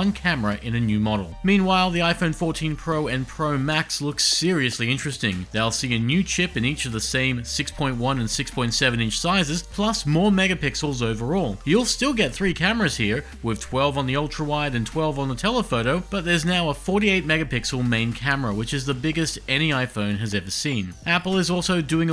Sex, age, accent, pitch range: male, 40-59, Australian, 120-175 Hz